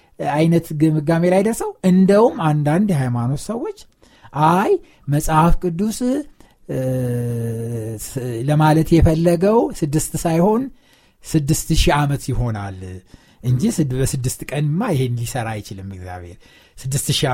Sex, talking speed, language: male, 90 wpm, Amharic